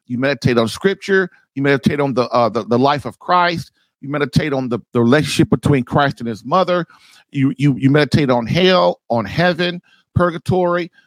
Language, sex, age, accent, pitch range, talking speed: English, male, 50-69, American, 140-180 Hz, 185 wpm